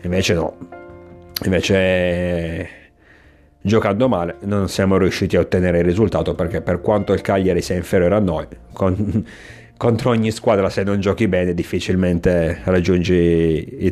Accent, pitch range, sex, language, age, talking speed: native, 90-105 Hz, male, Italian, 30-49, 140 wpm